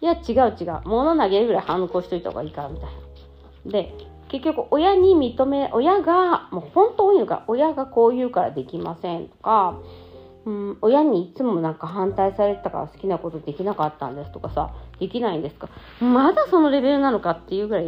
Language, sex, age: Japanese, female, 40-59